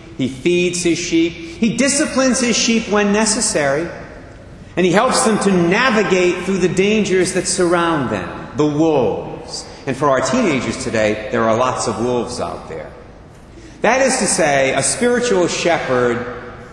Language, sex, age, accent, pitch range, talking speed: English, male, 40-59, American, 140-185 Hz, 155 wpm